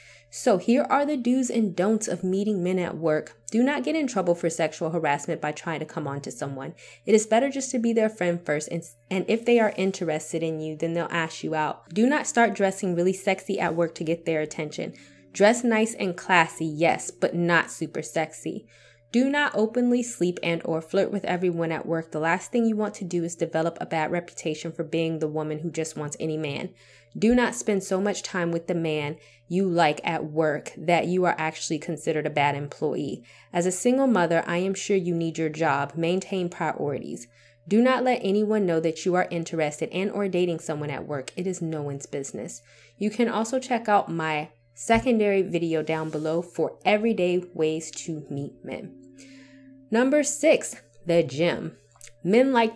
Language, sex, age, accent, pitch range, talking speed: English, female, 20-39, American, 155-210 Hz, 200 wpm